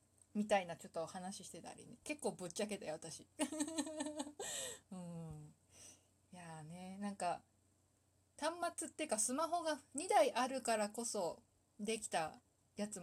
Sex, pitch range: female, 165-240 Hz